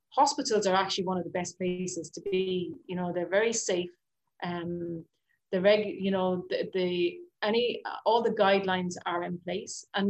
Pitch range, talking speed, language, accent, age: 180-210 Hz, 180 wpm, English, Irish, 30-49